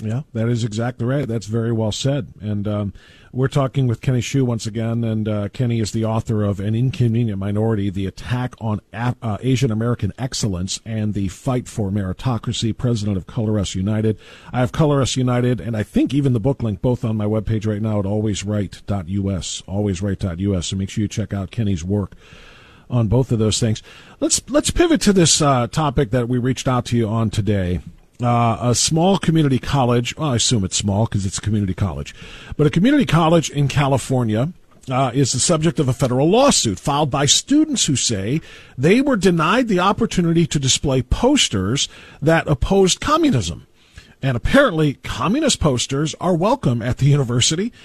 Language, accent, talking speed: English, American, 185 wpm